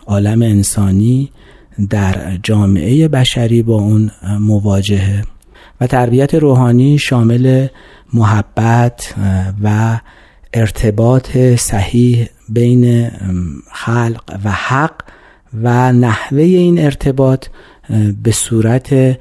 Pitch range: 105-130 Hz